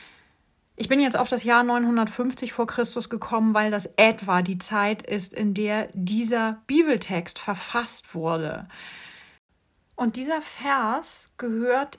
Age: 30-49